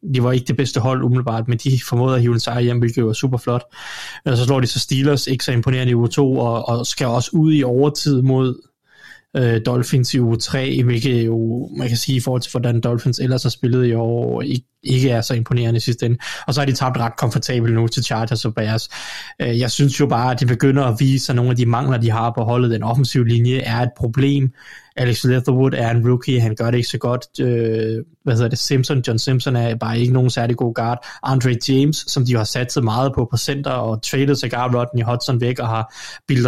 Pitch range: 120-130 Hz